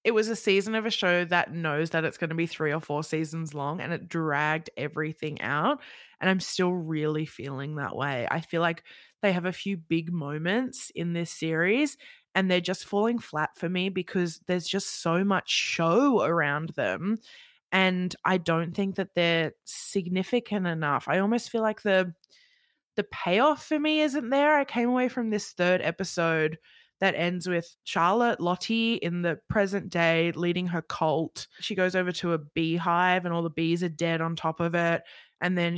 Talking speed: 190 wpm